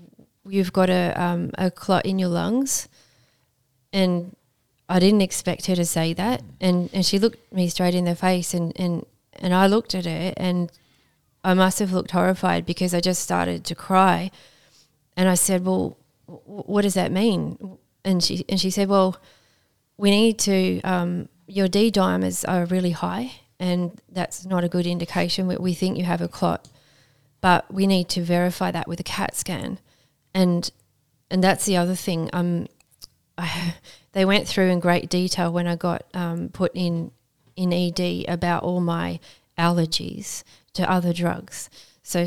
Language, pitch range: English, 170-185 Hz